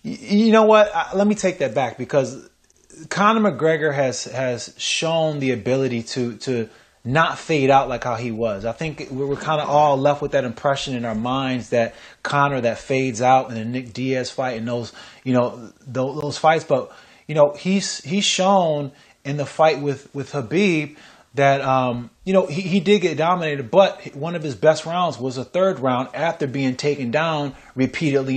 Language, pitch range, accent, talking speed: English, 130-155 Hz, American, 190 wpm